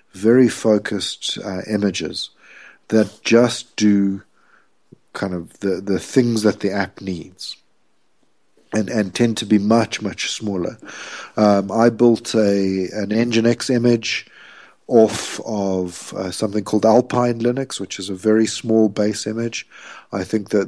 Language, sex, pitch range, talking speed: English, male, 100-115 Hz, 140 wpm